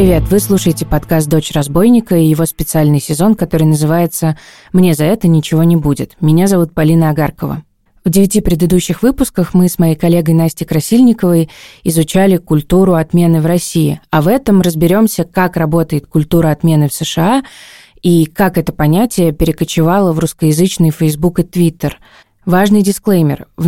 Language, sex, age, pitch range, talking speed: Russian, female, 20-39, 160-185 Hz, 150 wpm